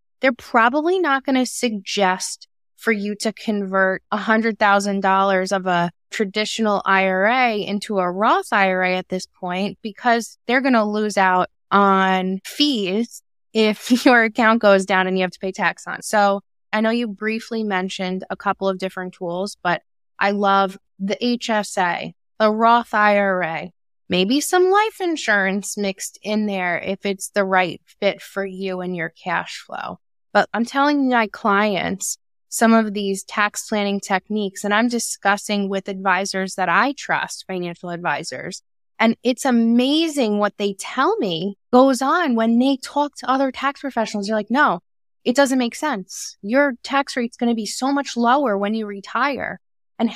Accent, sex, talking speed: American, female, 160 wpm